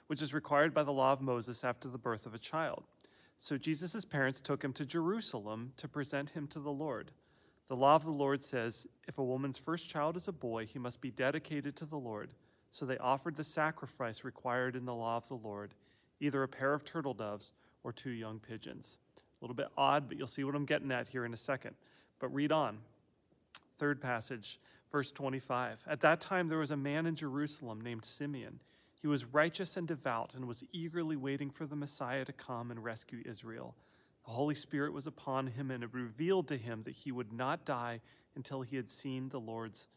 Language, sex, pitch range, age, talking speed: English, male, 120-145 Hz, 40-59, 215 wpm